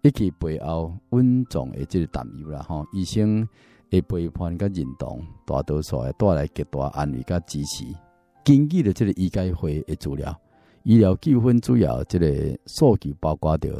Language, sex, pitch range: Chinese, male, 75-105 Hz